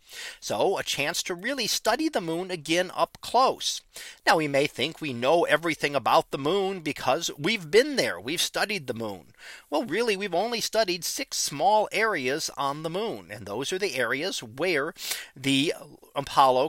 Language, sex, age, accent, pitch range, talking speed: English, male, 40-59, American, 140-220 Hz, 175 wpm